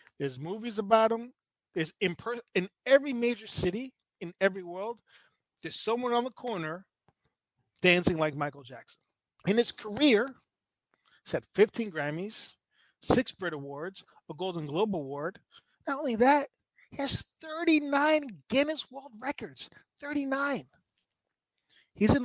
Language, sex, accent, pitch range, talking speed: English, male, American, 170-235 Hz, 130 wpm